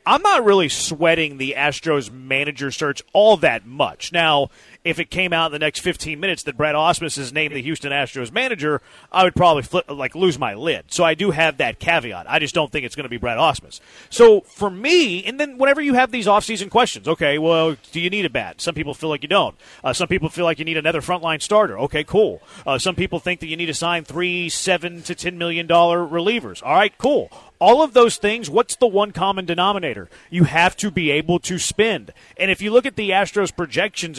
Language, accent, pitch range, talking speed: English, American, 155-200 Hz, 230 wpm